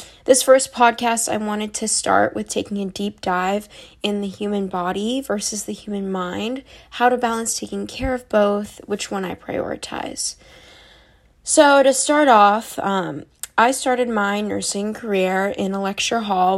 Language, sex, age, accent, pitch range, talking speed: English, female, 10-29, American, 200-235 Hz, 165 wpm